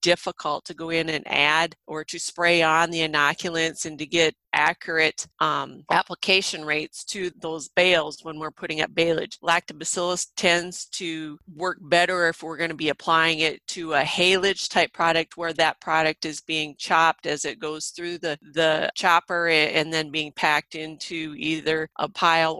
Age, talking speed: 40-59, 175 wpm